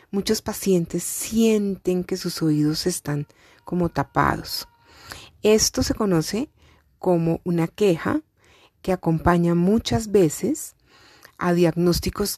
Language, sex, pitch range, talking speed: Spanish, female, 160-200 Hz, 100 wpm